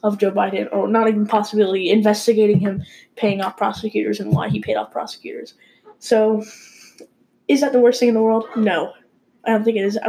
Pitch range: 205-245 Hz